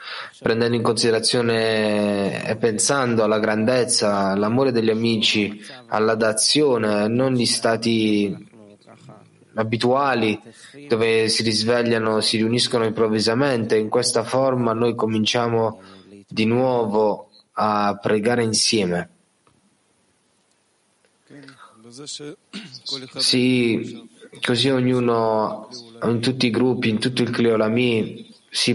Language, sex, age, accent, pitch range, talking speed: Italian, male, 20-39, native, 110-125 Hz, 90 wpm